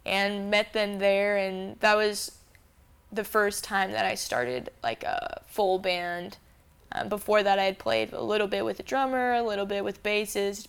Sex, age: female, 10-29